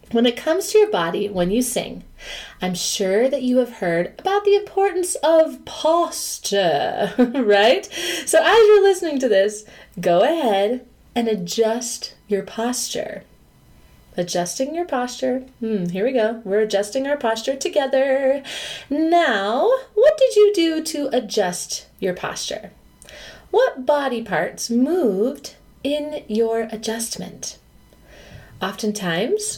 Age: 30-49